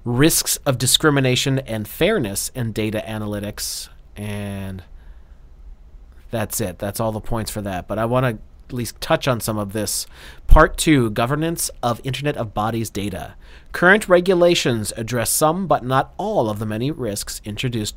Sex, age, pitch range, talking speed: male, 30-49, 105-150 Hz, 160 wpm